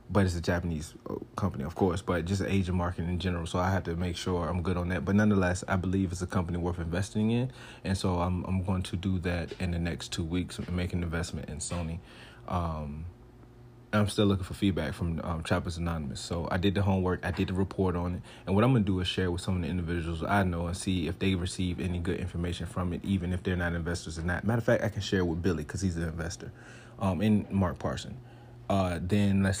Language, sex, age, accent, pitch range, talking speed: English, male, 30-49, American, 90-105 Hz, 255 wpm